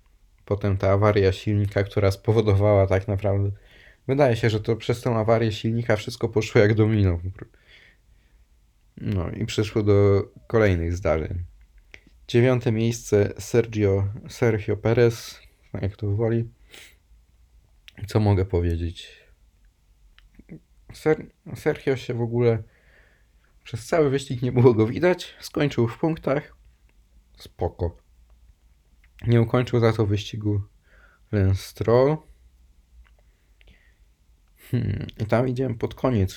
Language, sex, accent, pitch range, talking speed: Polish, male, native, 85-110 Hz, 105 wpm